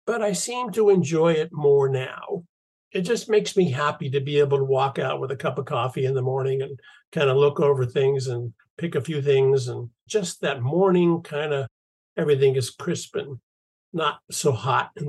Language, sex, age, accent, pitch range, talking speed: English, male, 60-79, American, 140-195 Hz, 205 wpm